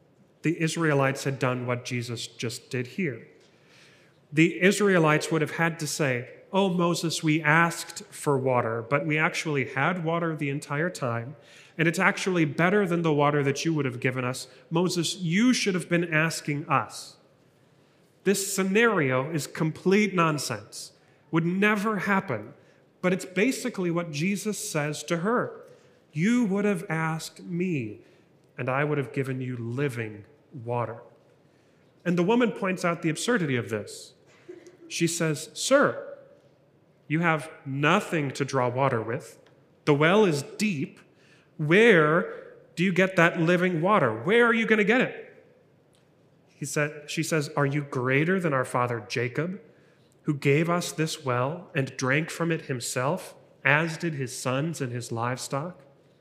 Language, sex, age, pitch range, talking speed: English, male, 30-49, 140-180 Hz, 150 wpm